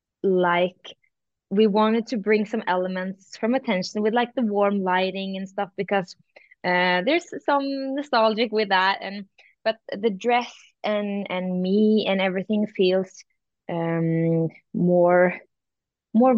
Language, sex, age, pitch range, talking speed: English, female, 20-39, 185-220 Hz, 130 wpm